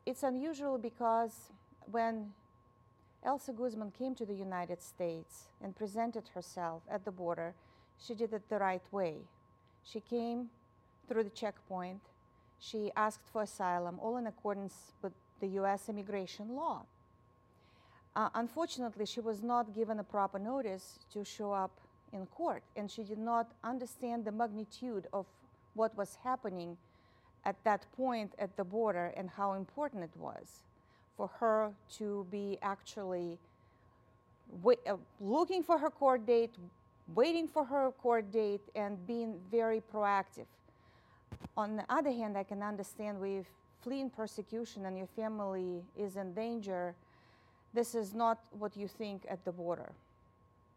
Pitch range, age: 195-235 Hz, 40-59